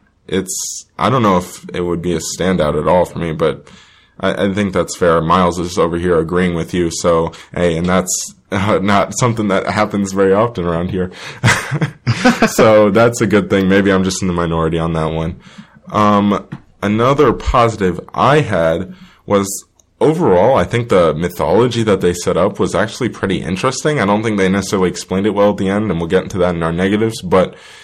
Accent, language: American, English